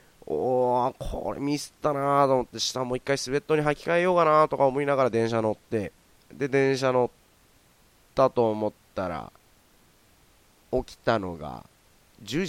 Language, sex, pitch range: Japanese, male, 100-135 Hz